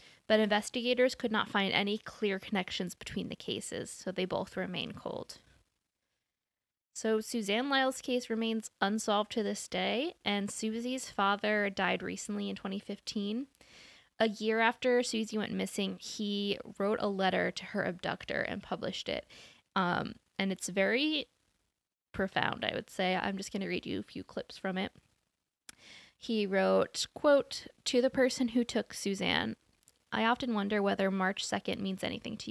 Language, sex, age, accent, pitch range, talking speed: English, female, 10-29, American, 200-240 Hz, 155 wpm